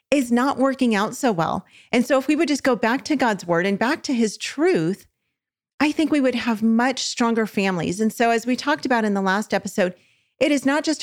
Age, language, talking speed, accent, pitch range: 40-59, English, 240 wpm, American, 190-240 Hz